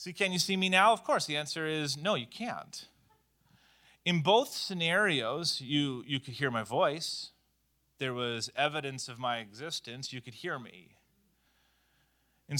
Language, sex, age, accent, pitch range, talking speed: English, male, 30-49, American, 115-155 Hz, 160 wpm